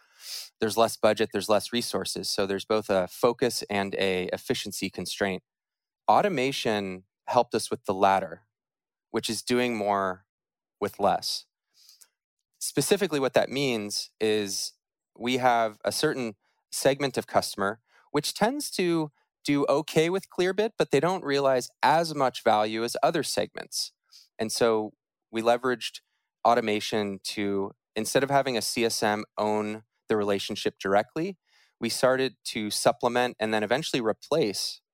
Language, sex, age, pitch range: English, male, 20-39, 100-125 Hz